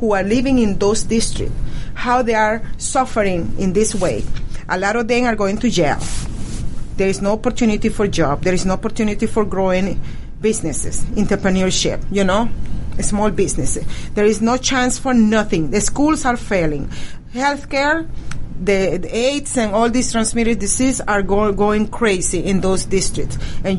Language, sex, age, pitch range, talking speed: English, female, 40-59, 185-240 Hz, 165 wpm